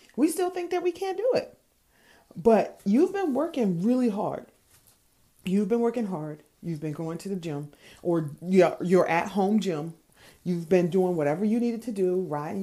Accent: American